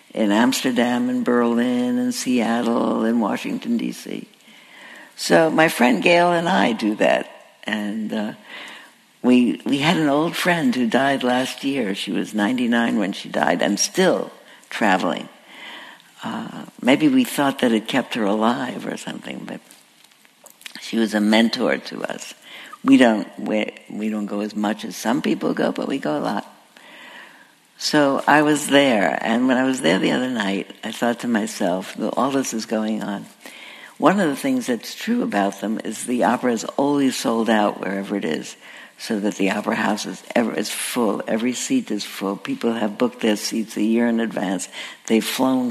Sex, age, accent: female, 60-79, American